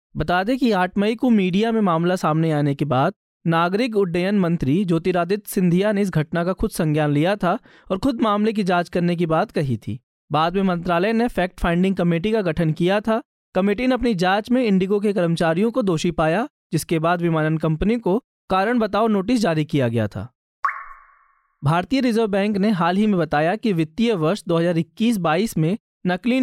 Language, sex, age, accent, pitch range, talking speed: Hindi, male, 20-39, native, 170-220 Hz, 195 wpm